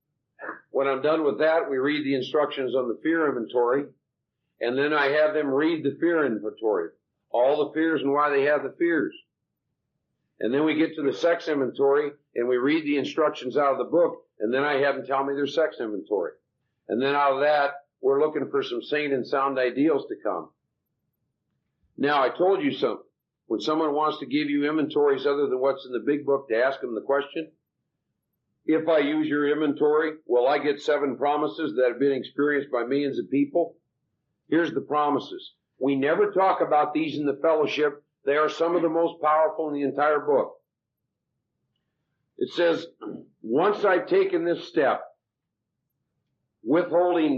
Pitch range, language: 140-165 Hz, English